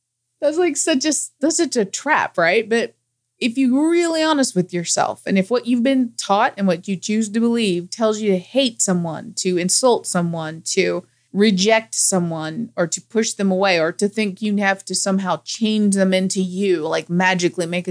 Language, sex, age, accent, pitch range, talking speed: English, female, 20-39, American, 180-240 Hz, 195 wpm